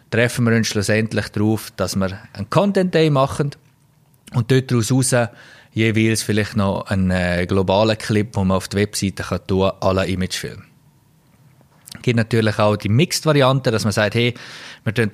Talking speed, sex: 165 wpm, male